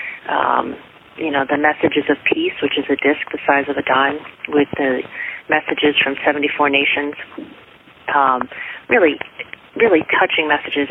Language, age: English, 40-59